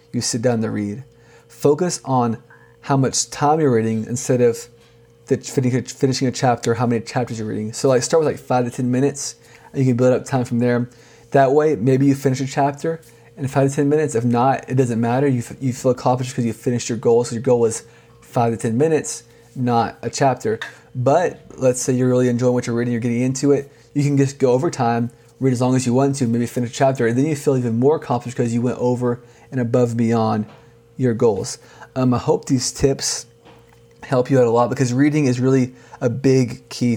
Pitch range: 115-130 Hz